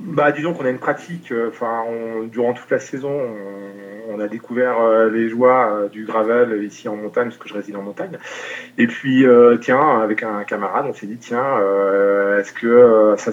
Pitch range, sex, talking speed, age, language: 100-125 Hz, male, 200 wpm, 30-49, French